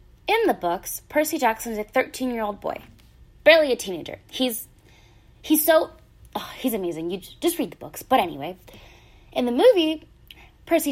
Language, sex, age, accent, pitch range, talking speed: English, female, 20-39, American, 185-305 Hz, 160 wpm